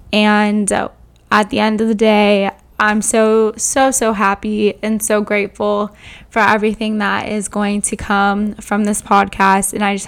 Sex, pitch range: female, 205-225 Hz